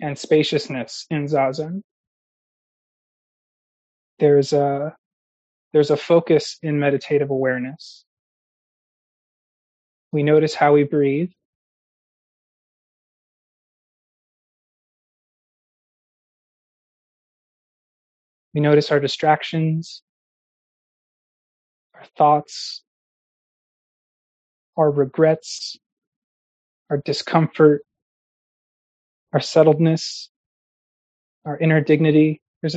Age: 20-39